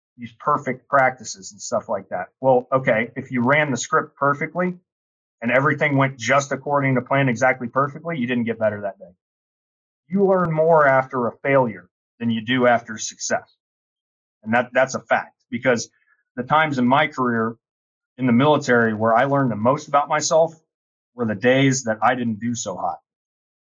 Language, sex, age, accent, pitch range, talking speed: English, male, 30-49, American, 115-140 Hz, 180 wpm